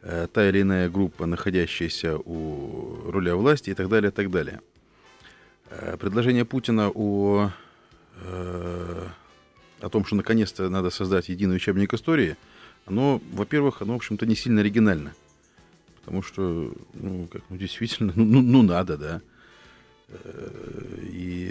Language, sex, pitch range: Russian, male, 90-110 Hz